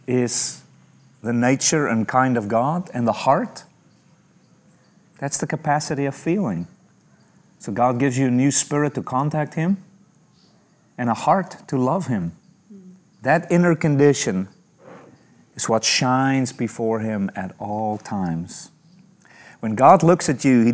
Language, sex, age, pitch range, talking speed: English, male, 30-49, 115-155 Hz, 140 wpm